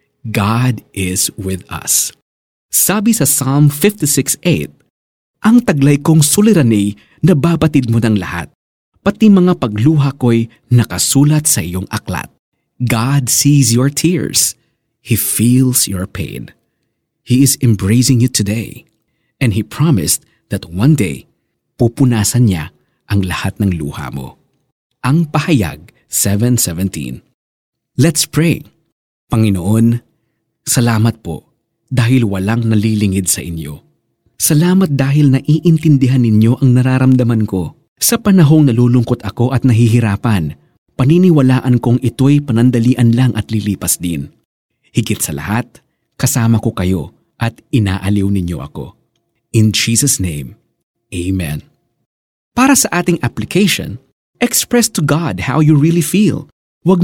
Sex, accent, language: male, native, Filipino